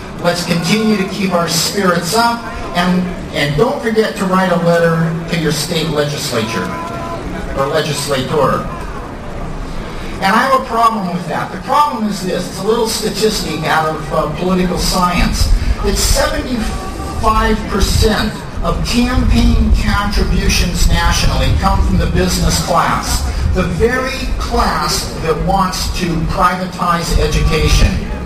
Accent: American